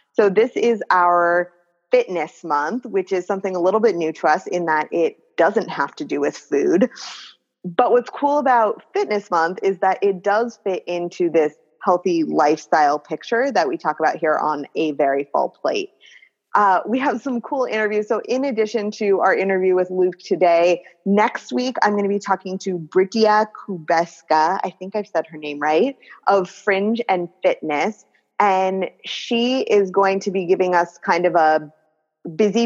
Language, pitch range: English, 165-215 Hz